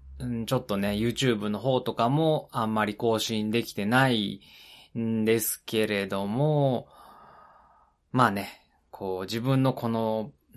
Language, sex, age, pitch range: Japanese, male, 20-39, 100-125 Hz